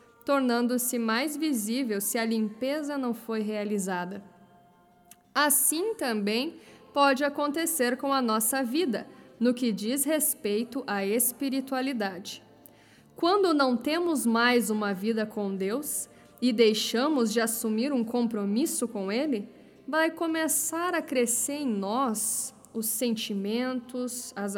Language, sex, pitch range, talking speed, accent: Portuguese, female, 220-285 Hz, 115 wpm, Brazilian